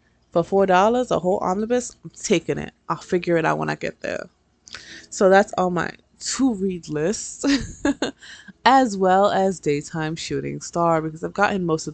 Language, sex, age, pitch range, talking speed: English, female, 20-39, 150-190 Hz, 165 wpm